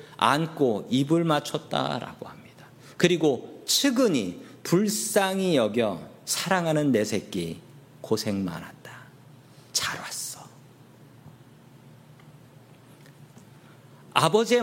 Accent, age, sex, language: native, 40-59, male, Korean